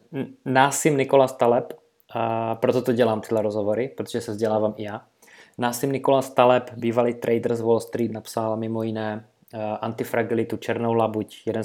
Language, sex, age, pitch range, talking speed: Czech, male, 20-39, 115-135 Hz, 145 wpm